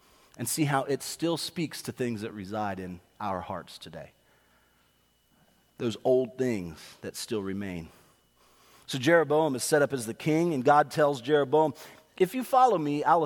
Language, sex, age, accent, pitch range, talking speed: English, male, 40-59, American, 100-165 Hz, 165 wpm